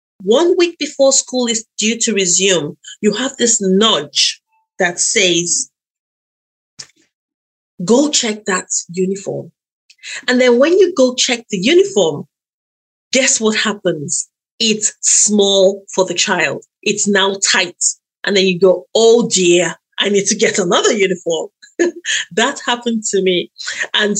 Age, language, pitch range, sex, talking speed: 30-49, English, 185-245 Hz, female, 135 wpm